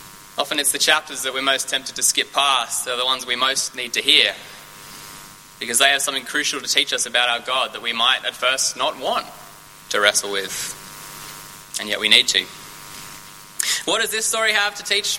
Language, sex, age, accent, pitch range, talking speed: English, male, 20-39, Australian, 115-190 Hz, 210 wpm